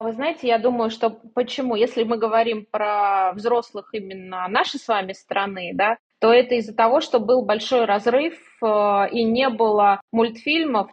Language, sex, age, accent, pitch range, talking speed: Russian, female, 20-39, native, 200-245 Hz, 160 wpm